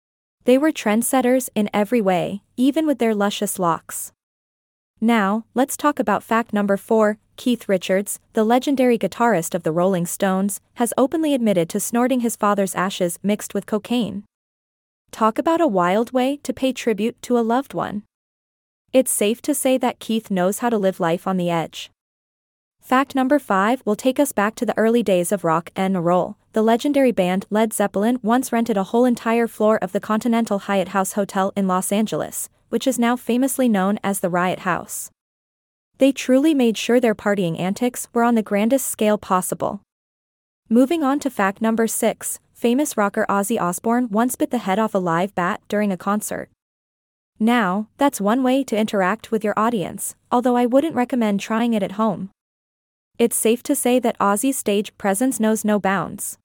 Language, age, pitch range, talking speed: English, 20-39, 195-245 Hz, 180 wpm